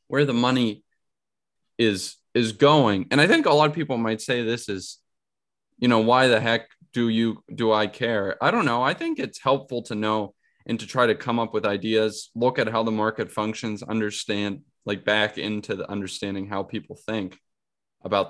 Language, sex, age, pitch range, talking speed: English, male, 10-29, 100-125 Hz, 195 wpm